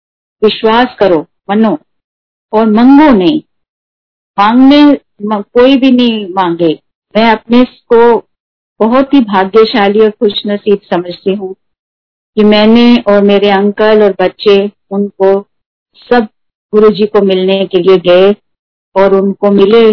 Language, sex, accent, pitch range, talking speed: Hindi, female, native, 195-235 Hz, 120 wpm